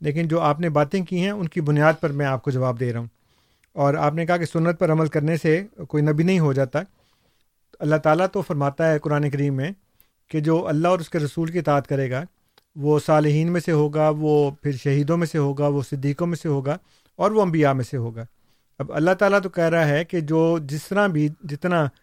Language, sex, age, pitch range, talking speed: Urdu, male, 40-59, 145-185 Hz, 235 wpm